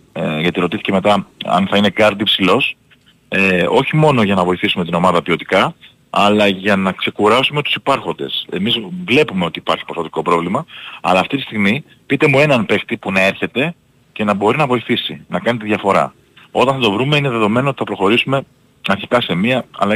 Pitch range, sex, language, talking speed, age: 95-120 Hz, male, Greek, 180 wpm, 40-59